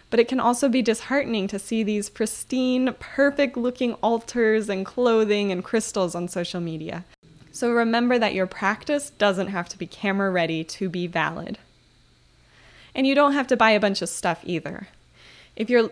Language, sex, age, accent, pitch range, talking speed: English, female, 20-39, American, 190-245 Hz, 170 wpm